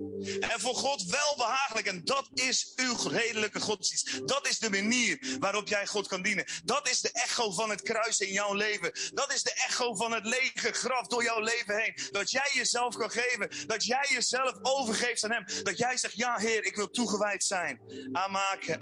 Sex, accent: male, Dutch